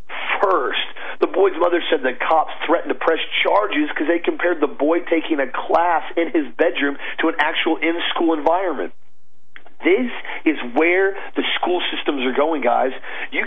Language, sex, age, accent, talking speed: English, male, 40-59, American, 165 wpm